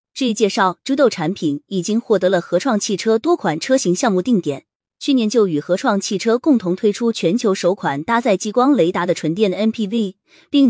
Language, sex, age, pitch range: Chinese, female, 20-39, 175-235 Hz